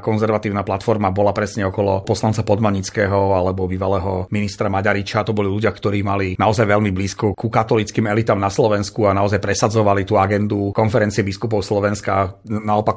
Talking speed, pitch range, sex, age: 155 wpm, 105-120 Hz, male, 40-59